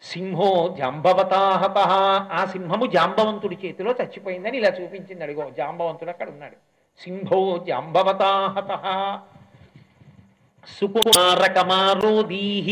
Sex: male